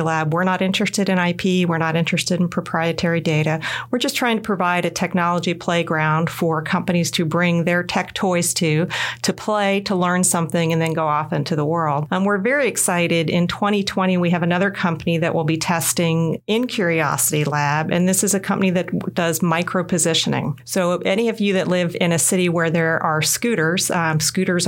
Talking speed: 200 wpm